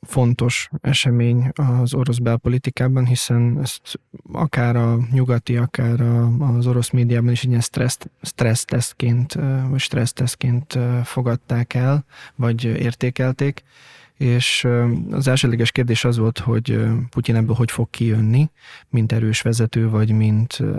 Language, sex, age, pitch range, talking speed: Hungarian, male, 20-39, 115-130 Hz, 115 wpm